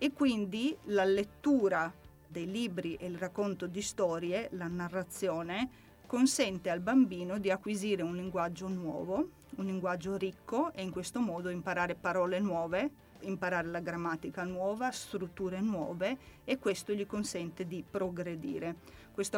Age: 30-49